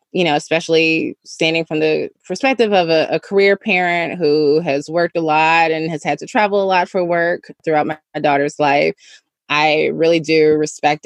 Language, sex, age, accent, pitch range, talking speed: English, female, 20-39, American, 150-185 Hz, 185 wpm